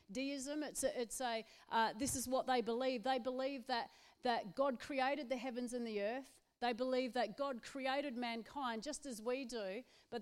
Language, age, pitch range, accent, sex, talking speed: English, 40-59, 225-255 Hz, Australian, female, 195 wpm